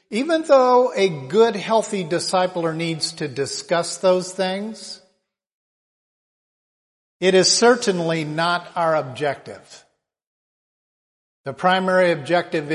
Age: 50-69